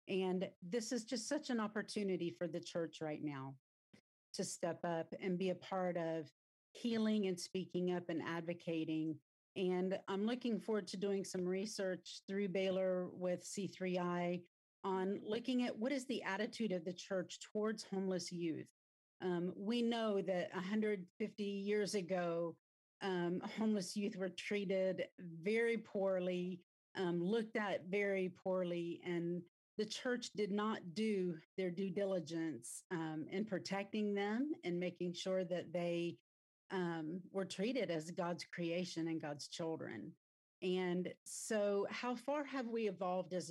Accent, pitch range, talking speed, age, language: American, 175-205 Hz, 145 wpm, 40-59, English